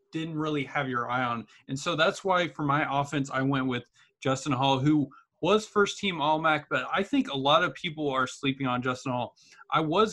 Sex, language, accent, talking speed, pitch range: male, English, American, 220 wpm, 135-160 Hz